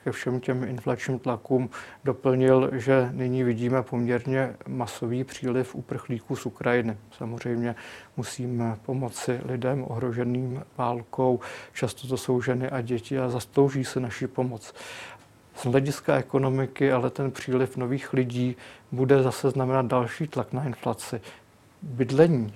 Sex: male